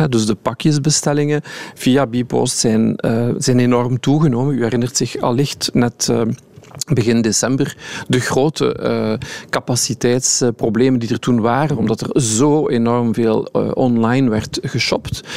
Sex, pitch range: male, 115-140 Hz